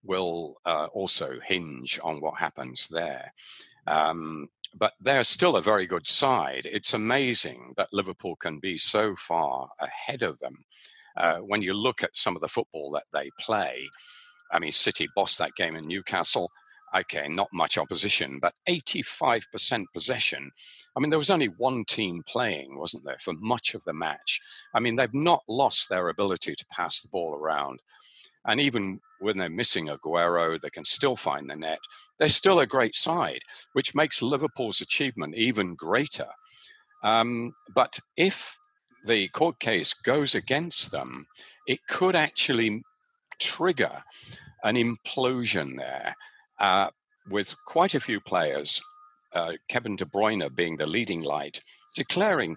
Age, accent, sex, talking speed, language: 50-69, British, male, 155 wpm, English